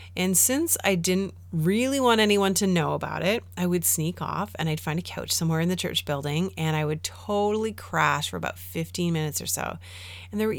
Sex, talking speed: female, 220 wpm